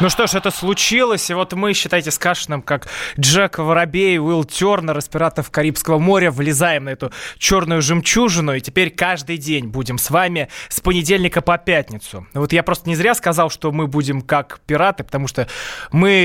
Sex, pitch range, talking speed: male, 150-190 Hz, 190 wpm